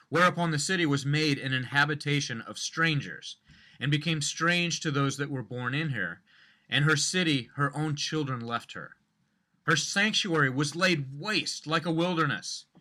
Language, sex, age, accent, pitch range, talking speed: English, male, 30-49, American, 140-170 Hz, 165 wpm